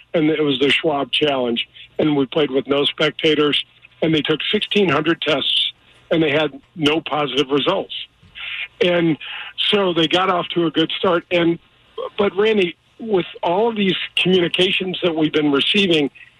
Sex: male